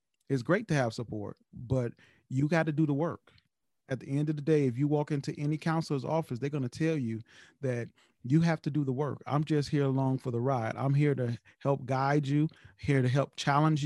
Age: 40-59